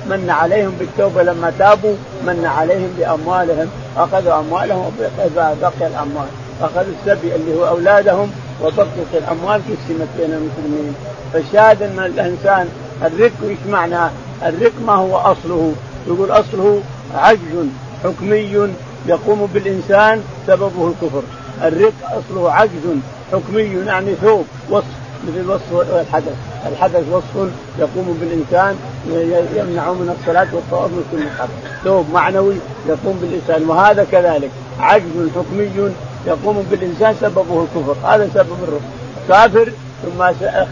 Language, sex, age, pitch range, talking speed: Arabic, male, 50-69, 160-200 Hz, 115 wpm